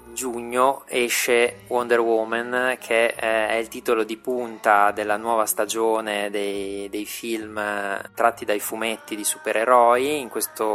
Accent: native